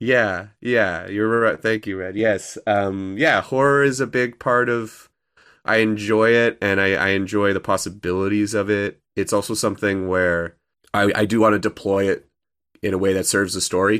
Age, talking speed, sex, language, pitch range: 30-49, 195 wpm, male, English, 90-105 Hz